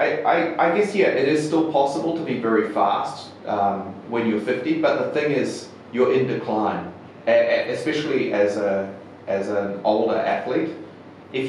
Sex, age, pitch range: male, 30-49, 100-130 Hz